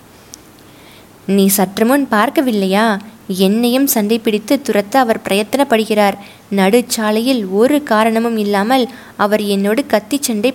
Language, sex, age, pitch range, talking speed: Tamil, female, 20-39, 195-245 Hz, 95 wpm